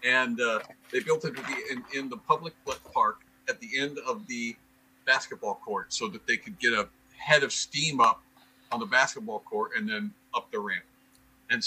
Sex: male